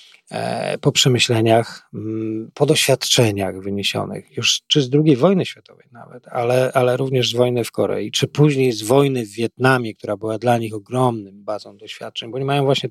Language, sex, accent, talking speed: Polish, male, native, 165 wpm